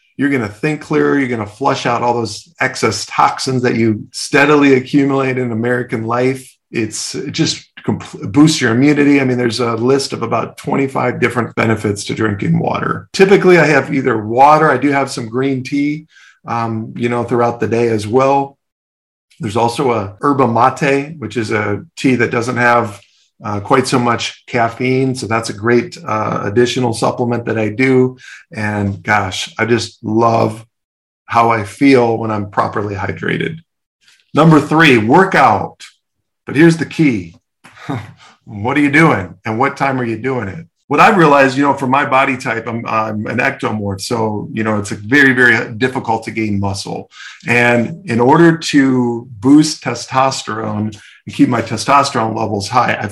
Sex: male